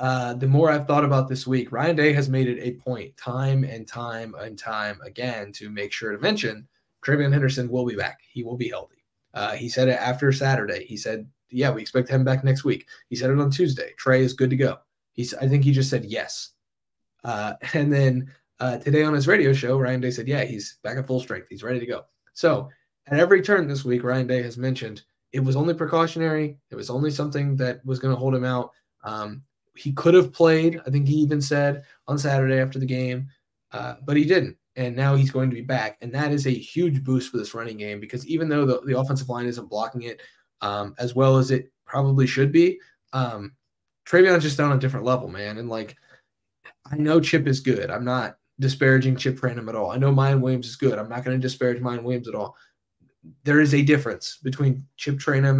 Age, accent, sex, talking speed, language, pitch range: 10-29, American, male, 230 wpm, English, 125-140 Hz